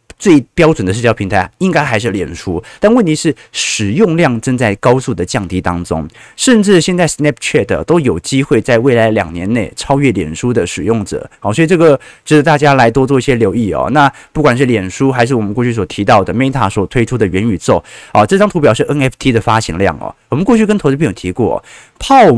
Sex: male